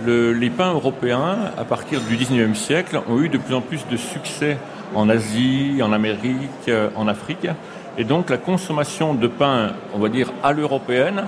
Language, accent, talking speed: French, French, 180 wpm